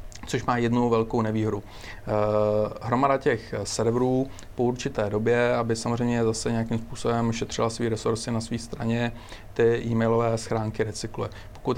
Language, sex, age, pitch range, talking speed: Czech, male, 40-59, 110-120 Hz, 140 wpm